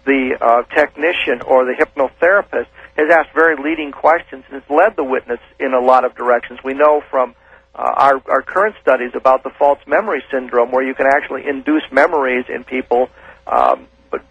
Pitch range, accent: 130-155 Hz, American